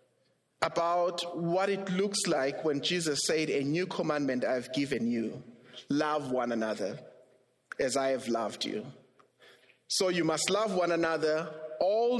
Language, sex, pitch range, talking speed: English, male, 140-190 Hz, 145 wpm